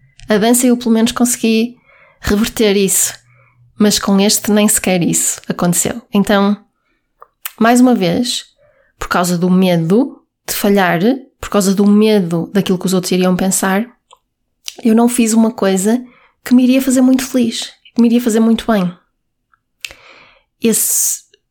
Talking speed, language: 150 wpm, Portuguese